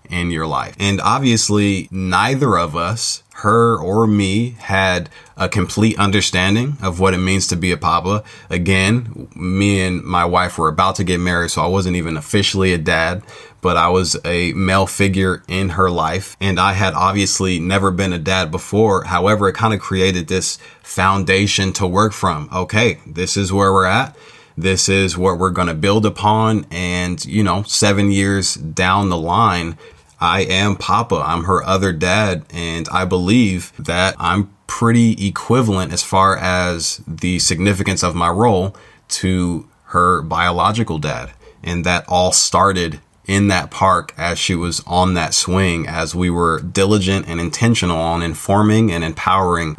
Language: English